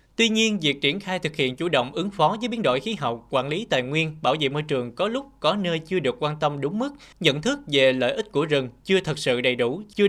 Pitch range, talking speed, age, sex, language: 130-185 Hz, 280 wpm, 20-39, male, Vietnamese